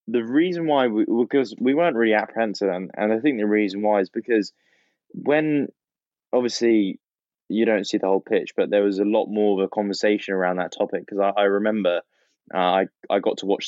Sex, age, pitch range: male, 10-29, 95-115 Hz